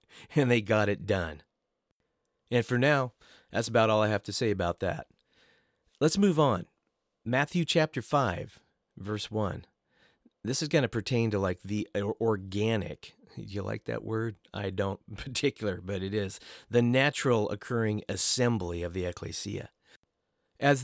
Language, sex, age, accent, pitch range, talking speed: English, male, 40-59, American, 100-130 Hz, 155 wpm